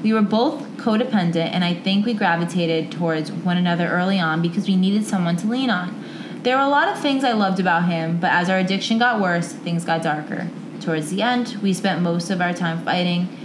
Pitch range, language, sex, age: 170-205 Hz, English, female, 20-39